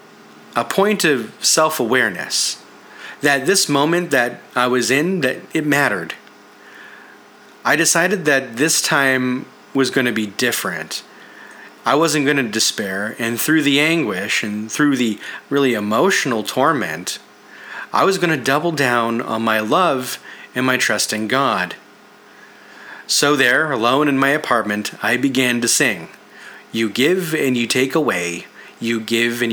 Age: 30-49